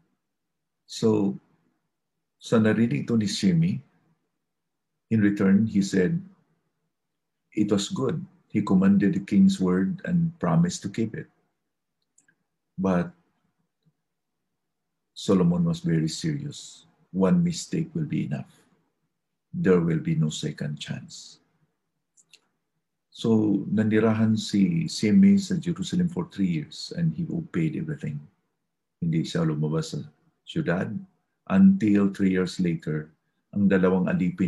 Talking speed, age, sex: 105 wpm, 50-69, male